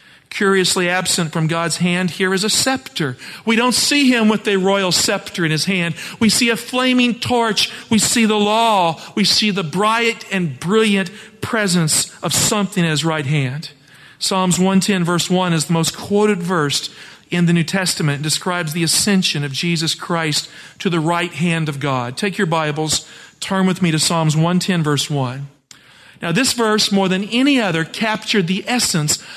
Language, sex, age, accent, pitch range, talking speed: English, male, 50-69, American, 165-210 Hz, 180 wpm